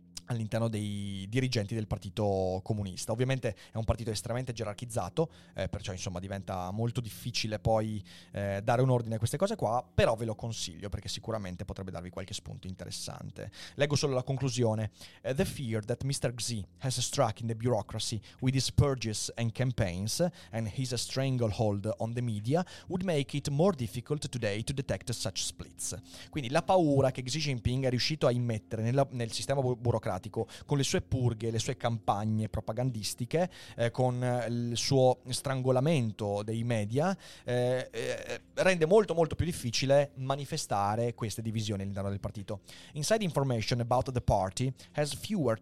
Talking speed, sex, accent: 120 wpm, male, native